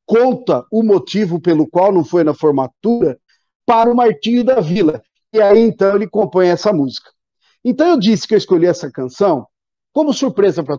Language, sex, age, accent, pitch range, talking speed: Portuguese, male, 50-69, Brazilian, 180-255 Hz, 180 wpm